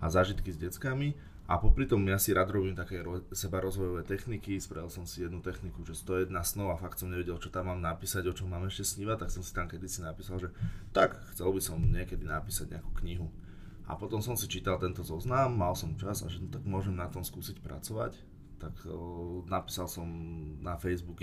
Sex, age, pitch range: male, 20-39, 85-95 Hz